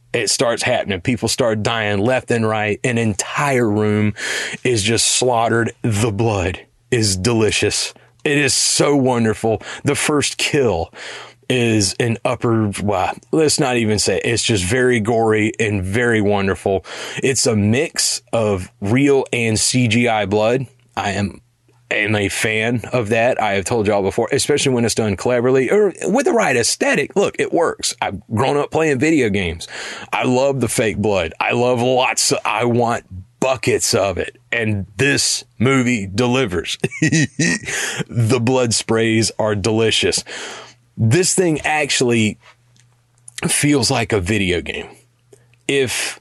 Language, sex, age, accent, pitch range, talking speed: English, male, 30-49, American, 105-125 Hz, 145 wpm